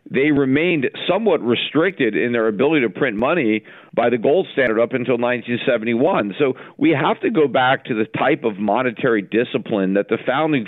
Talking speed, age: 180 wpm, 50-69